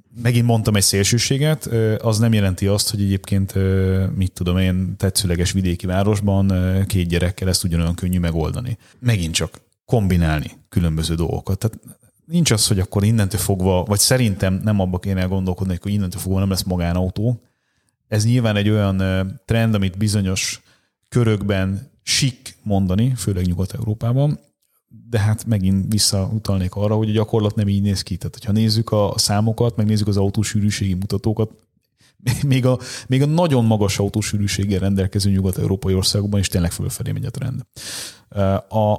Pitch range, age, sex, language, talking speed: 95-115 Hz, 30-49, male, Hungarian, 150 wpm